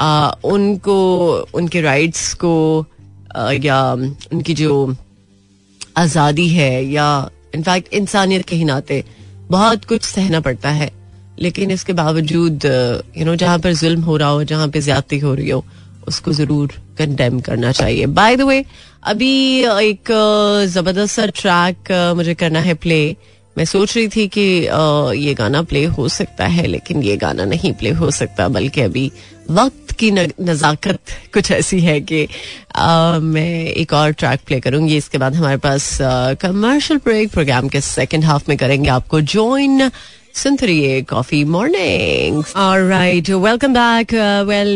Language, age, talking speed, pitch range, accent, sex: Hindi, 30-49, 135 wpm, 140-185 Hz, native, female